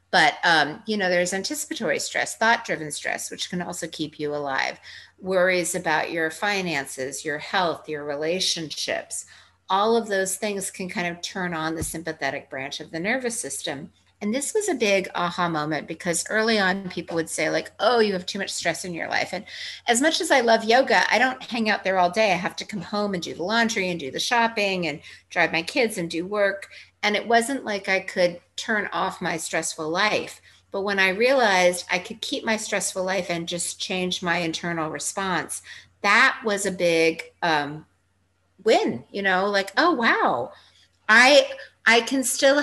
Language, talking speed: English, 195 wpm